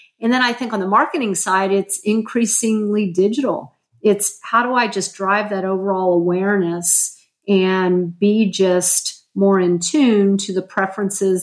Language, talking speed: English, 150 wpm